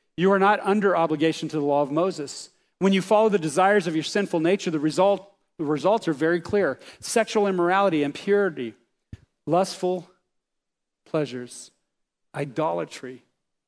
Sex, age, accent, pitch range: male, 40-59, American, 135-190 Hz